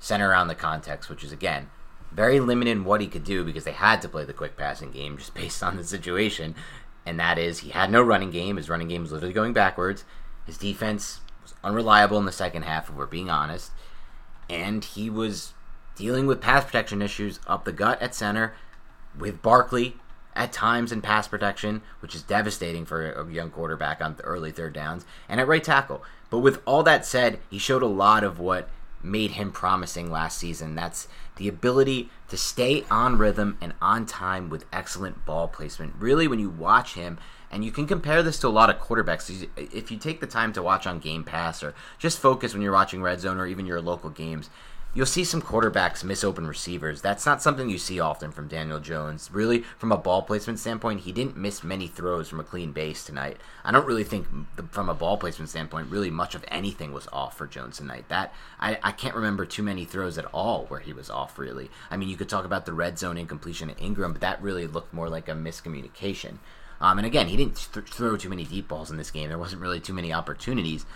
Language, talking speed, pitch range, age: English, 220 wpm, 80-105 Hz, 30-49